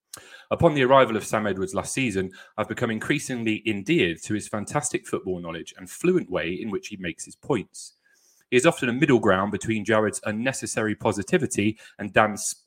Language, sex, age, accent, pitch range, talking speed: English, male, 30-49, British, 95-125 Hz, 180 wpm